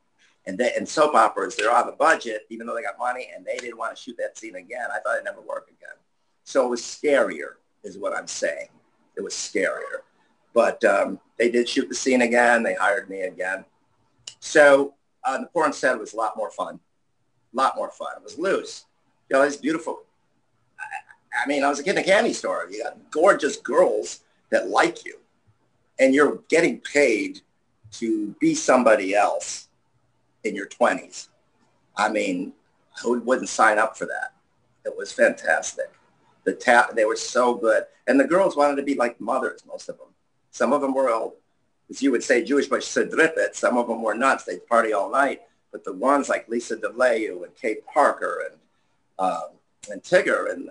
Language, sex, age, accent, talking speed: English, male, 50-69, American, 195 wpm